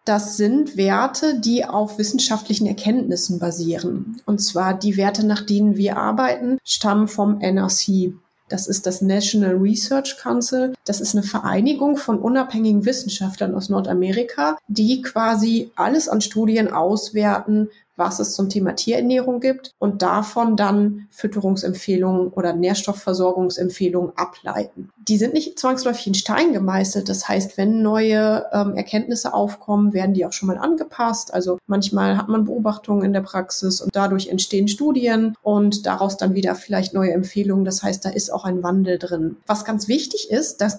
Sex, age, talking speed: female, 30-49, 155 wpm